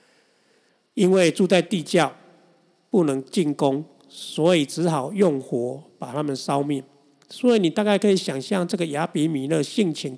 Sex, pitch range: male, 140-180 Hz